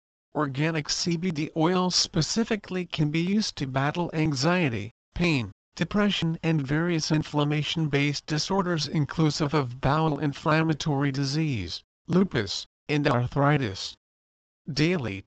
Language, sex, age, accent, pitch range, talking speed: English, male, 50-69, American, 135-170 Hz, 100 wpm